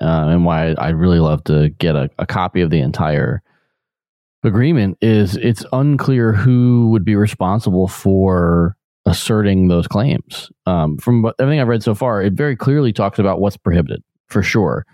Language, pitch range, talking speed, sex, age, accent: English, 85-110 Hz, 170 wpm, male, 30-49, American